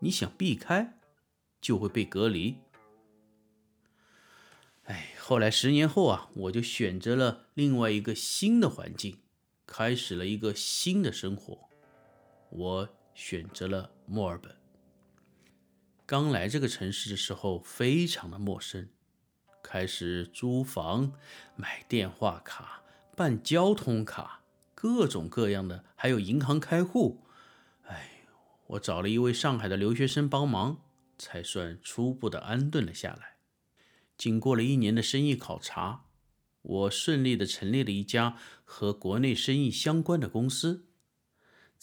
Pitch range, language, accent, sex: 100-145 Hz, Chinese, native, male